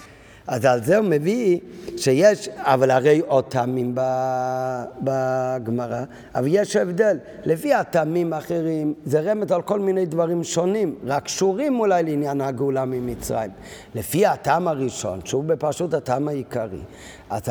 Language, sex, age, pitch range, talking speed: Hebrew, male, 50-69, 140-190 Hz, 130 wpm